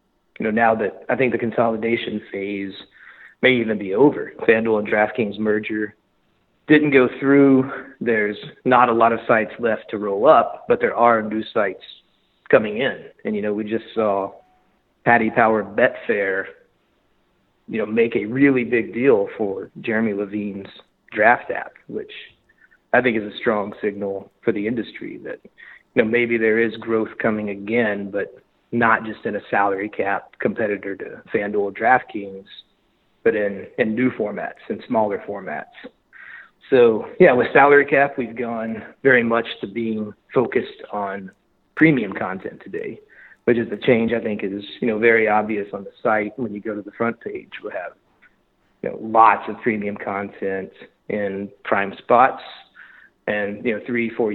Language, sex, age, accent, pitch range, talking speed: English, male, 40-59, American, 100-115 Hz, 165 wpm